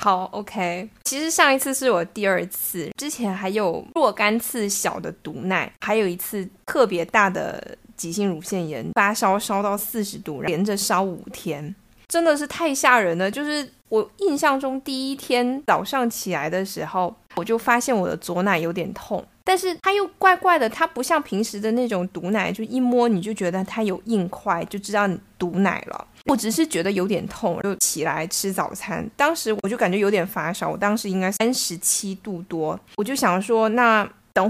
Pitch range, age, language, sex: 185-245 Hz, 20-39, Chinese, female